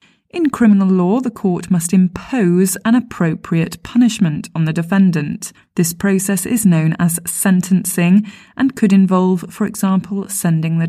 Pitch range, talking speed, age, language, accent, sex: 170-210 Hz, 145 wpm, 20-39, English, British, female